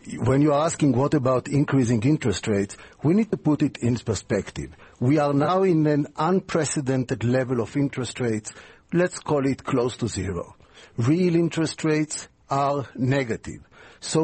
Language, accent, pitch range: English, Israeli, 120-160 Hz